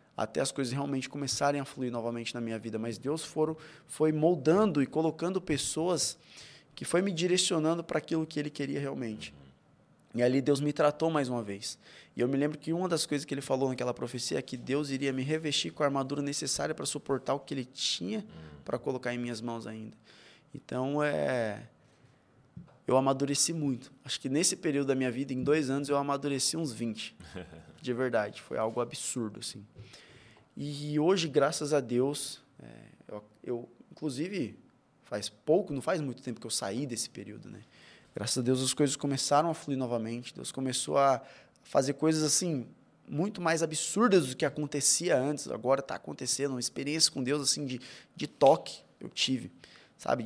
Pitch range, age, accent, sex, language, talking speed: 125-150 Hz, 20-39, Brazilian, male, Portuguese, 185 wpm